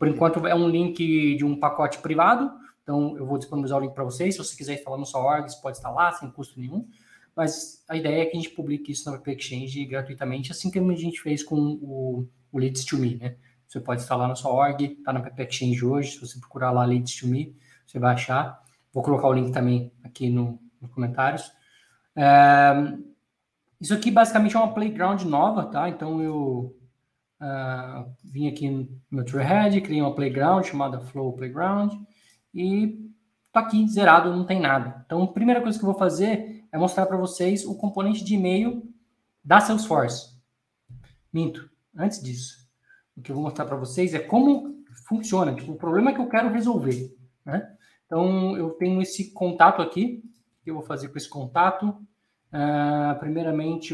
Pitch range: 135-185 Hz